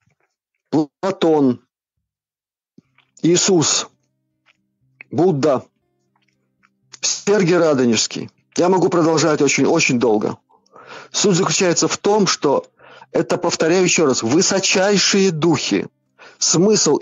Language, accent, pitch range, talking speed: Russian, native, 130-185 Hz, 80 wpm